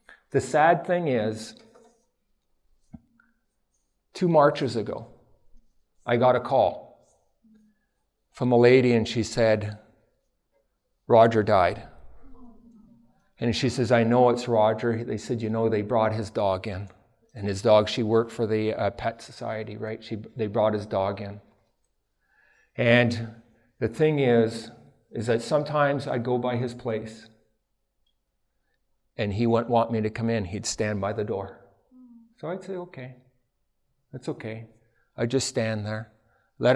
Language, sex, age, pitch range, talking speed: English, male, 40-59, 110-130 Hz, 145 wpm